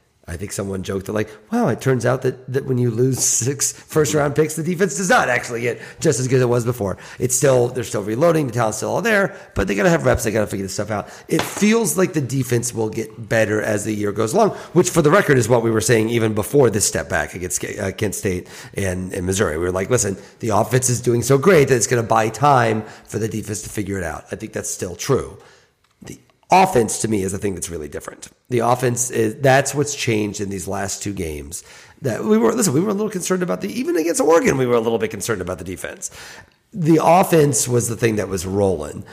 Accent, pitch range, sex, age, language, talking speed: American, 105-135 Hz, male, 40-59, English, 250 wpm